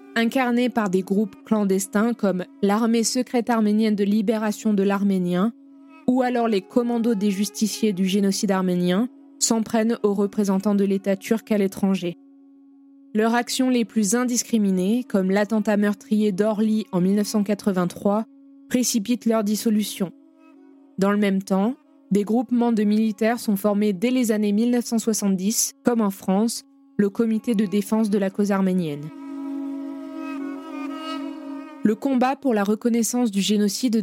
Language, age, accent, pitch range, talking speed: French, 20-39, French, 205-250 Hz, 135 wpm